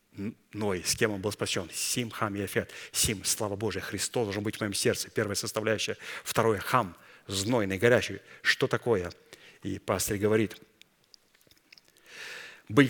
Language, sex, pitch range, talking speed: Russian, male, 105-125 Hz, 150 wpm